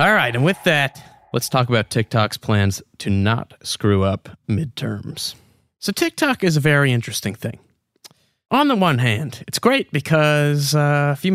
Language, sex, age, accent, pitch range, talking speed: English, male, 30-49, American, 115-155 Hz, 170 wpm